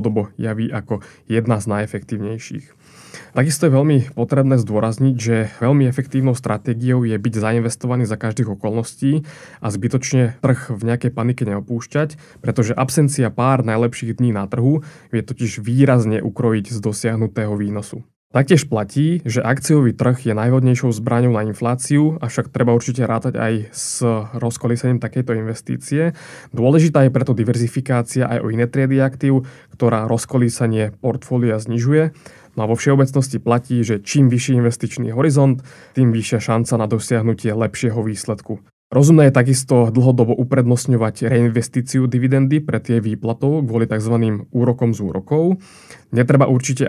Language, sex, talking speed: Slovak, male, 140 wpm